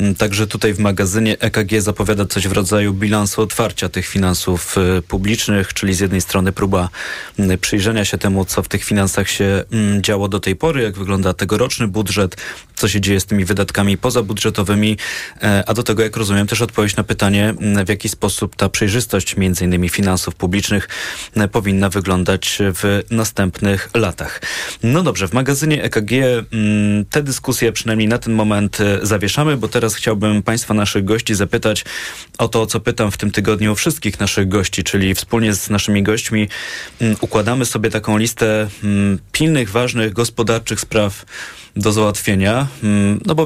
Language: Polish